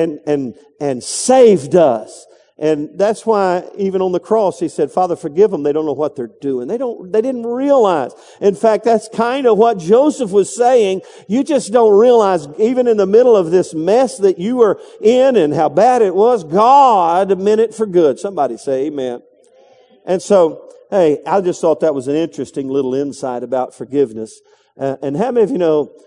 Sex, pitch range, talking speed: male, 150-220 Hz, 200 wpm